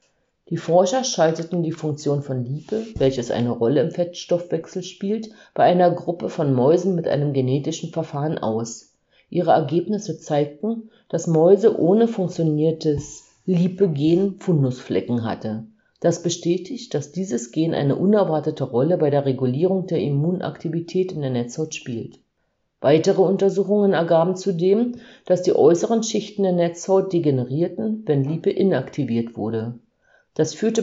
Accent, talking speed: German, 130 wpm